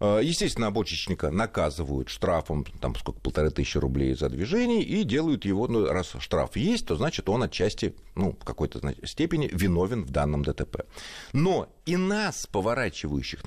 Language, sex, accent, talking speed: Russian, male, native, 155 wpm